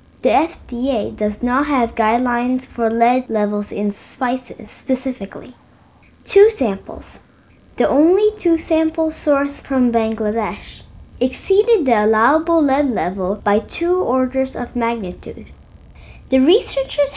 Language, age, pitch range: English, 10-29, 225-315 Hz